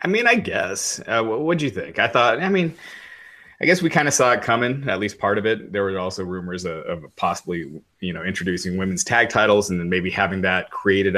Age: 30-49